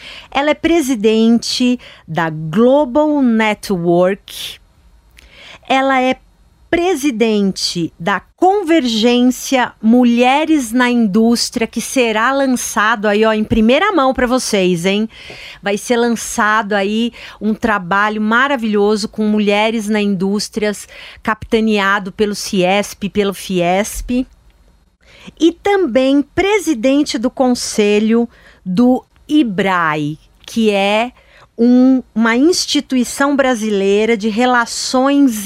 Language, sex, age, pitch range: Portuguese, female, 40-59, 195-255 Hz